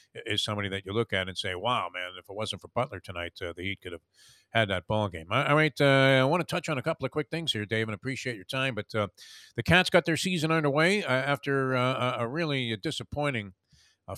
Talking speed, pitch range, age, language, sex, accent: 245 wpm, 100-135 Hz, 50-69, English, male, American